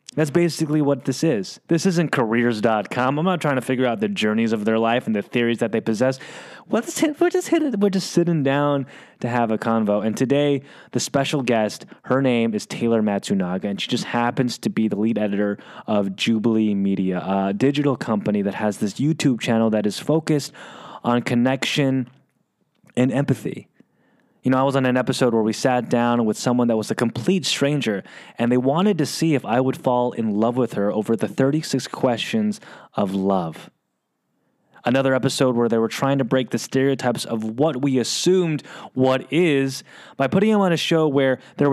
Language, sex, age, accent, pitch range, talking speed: English, male, 20-39, American, 115-155 Hz, 190 wpm